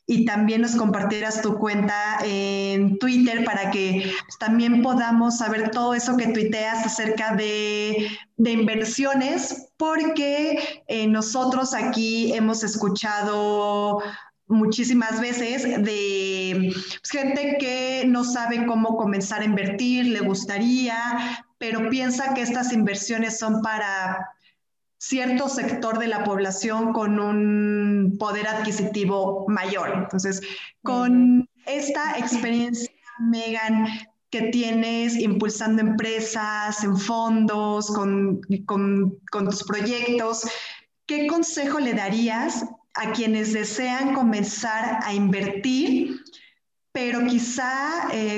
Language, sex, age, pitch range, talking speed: Spanish, female, 20-39, 205-245 Hz, 105 wpm